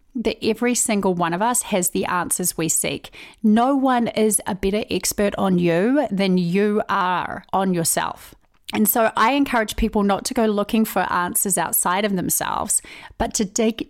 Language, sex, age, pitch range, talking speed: English, female, 30-49, 185-235 Hz, 175 wpm